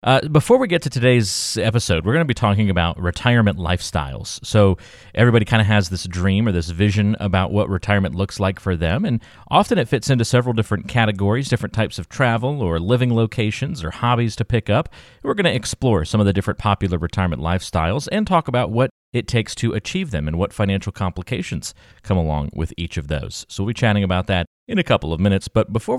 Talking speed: 220 wpm